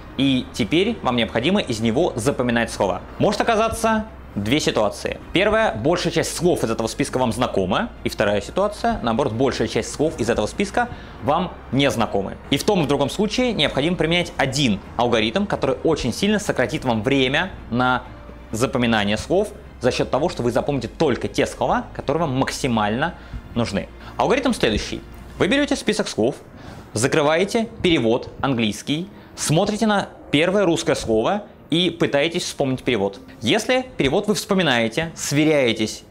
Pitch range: 115-170 Hz